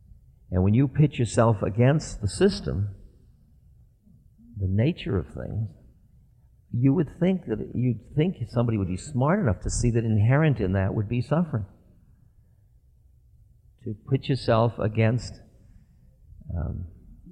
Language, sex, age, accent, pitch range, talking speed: English, male, 50-69, American, 95-125 Hz, 130 wpm